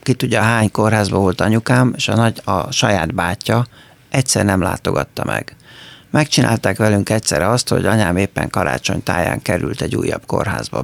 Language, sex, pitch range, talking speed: Hungarian, male, 105-130 Hz, 160 wpm